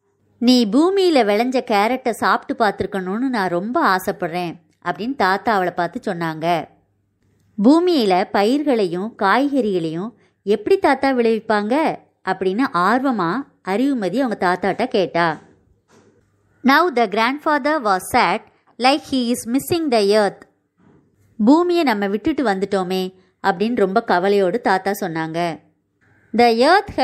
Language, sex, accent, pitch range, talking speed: Tamil, male, native, 195-275 Hz, 85 wpm